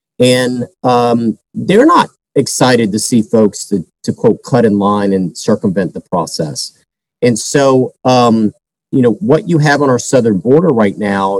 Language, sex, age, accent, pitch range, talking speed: English, male, 40-59, American, 100-125 Hz, 170 wpm